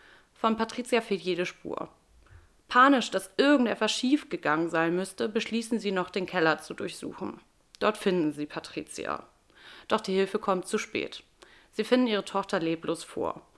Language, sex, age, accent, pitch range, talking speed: German, female, 30-49, German, 170-210 Hz, 150 wpm